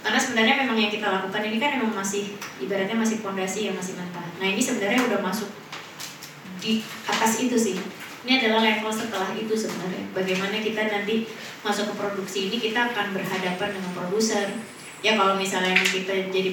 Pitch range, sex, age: 190-225 Hz, female, 20-39